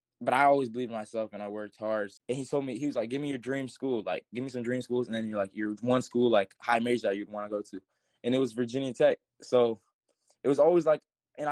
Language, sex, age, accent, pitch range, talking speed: English, male, 20-39, American, 110-125 Hz, 285 wpm